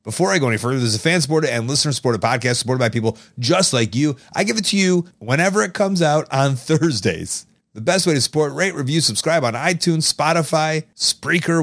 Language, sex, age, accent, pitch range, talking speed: English, male, 30-49, American, 120-165 Hz, 205 wpm